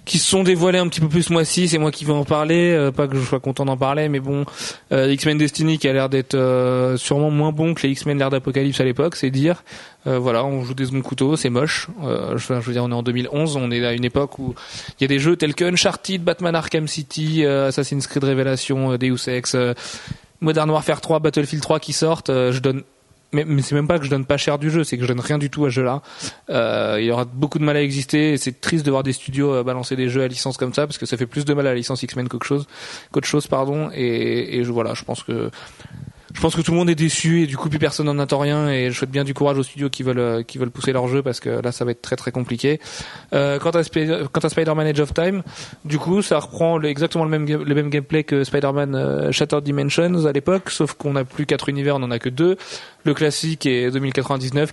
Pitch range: 130-155 Hz